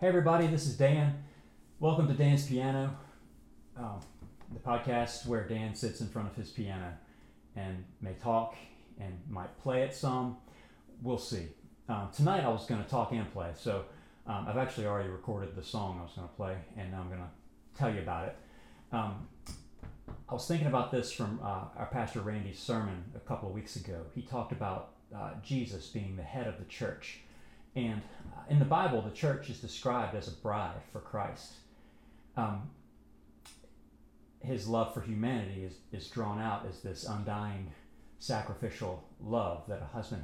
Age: 40-59